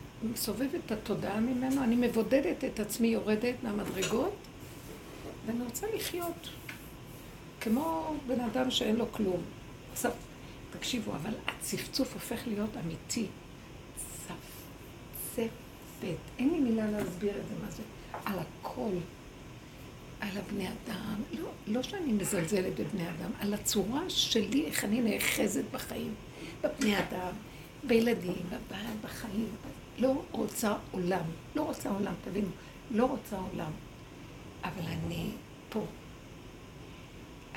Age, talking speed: 60-79, 115 wpm